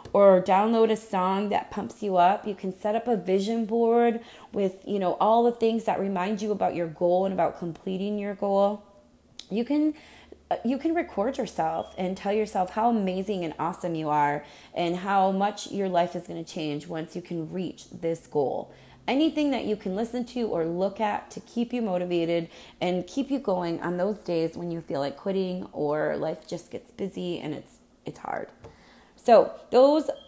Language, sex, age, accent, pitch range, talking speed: English, female, 20-39, American, 185-235 Hz, 195 wpm